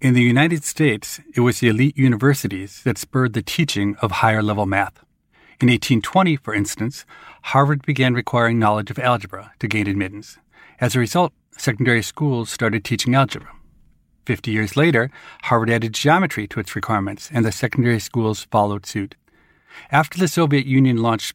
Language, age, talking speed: English, 40-59, 160 wpm